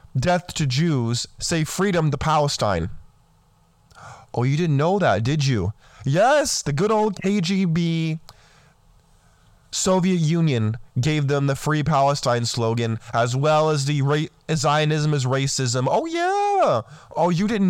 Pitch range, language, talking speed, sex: 135-175 Hz, English, 130 wpm, male